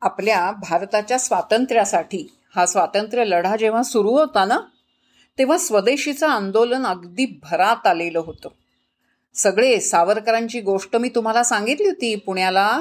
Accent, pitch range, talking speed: native, 195-270 Hz, 115 wpm